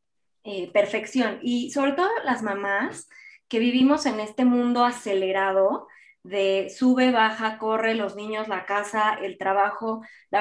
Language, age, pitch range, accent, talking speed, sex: Spanish, 20-39, 195-225 Hz, Mexican, 140 wpm, female